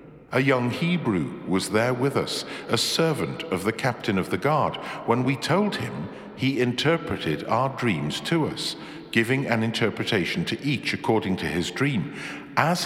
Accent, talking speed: British, 165 wpm